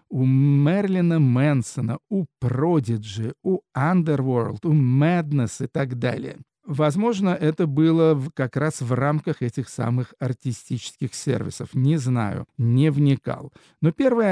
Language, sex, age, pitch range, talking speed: Russian, male, 50-69, 130-165 Hz, 120 wpm